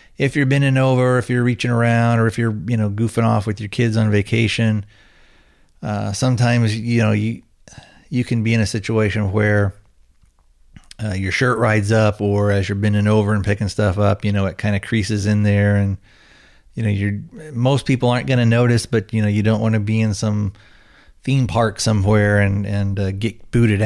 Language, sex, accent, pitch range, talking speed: English, male, American, 100-115 Hz, 205 wpm